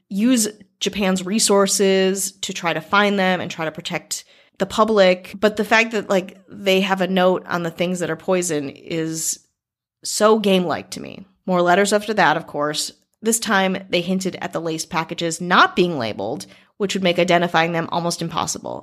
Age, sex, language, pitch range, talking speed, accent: 30-49, female, English, 170-195 Hz, 185 wpm, American